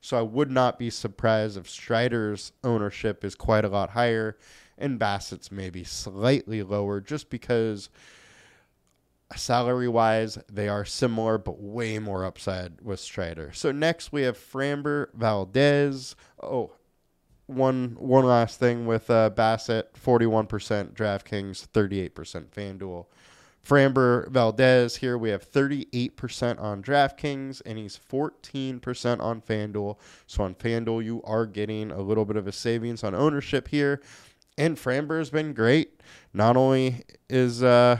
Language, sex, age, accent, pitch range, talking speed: English, male, 20-39, American, 105-130 Hz, 135 wpm